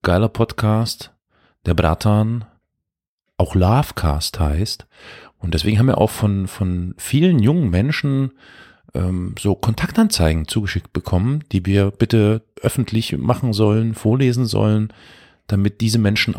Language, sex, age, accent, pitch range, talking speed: German, male, 40-59, German, 95-115 Hz, 120 wpm